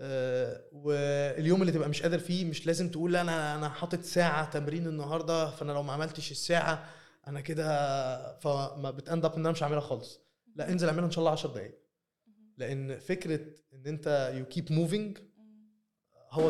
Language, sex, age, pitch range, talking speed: Arabic, male, 20-39, 135-165 Hz, 170 wpm